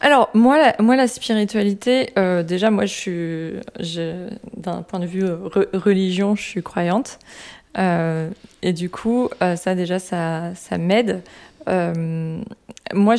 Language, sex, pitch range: French, female, 180-205 Hz